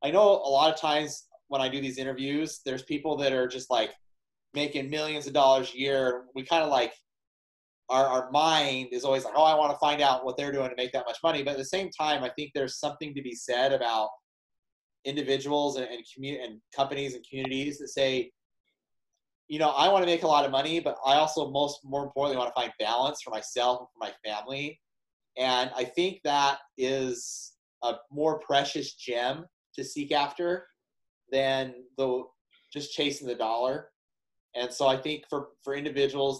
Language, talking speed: English, 200 wpm